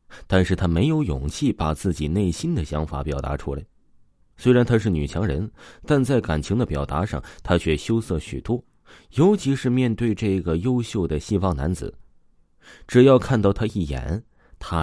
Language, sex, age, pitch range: Chinese, male, 30-49, 75-115 Hz